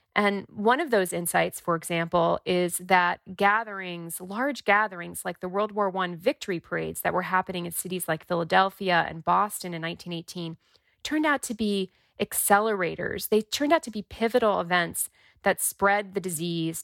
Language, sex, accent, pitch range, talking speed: English, female, American, 175-215 Hz, 165 wpm